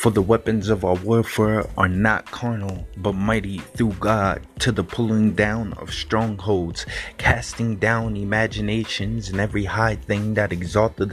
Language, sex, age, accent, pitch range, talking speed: English, male, 30-49, American, 105-115 Hz, 150 wpm